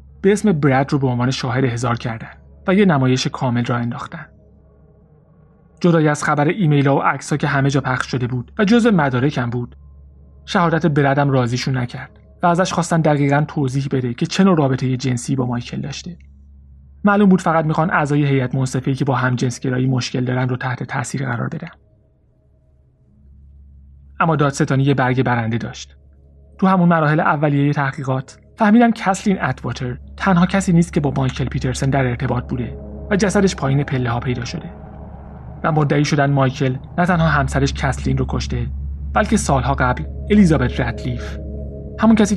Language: Persian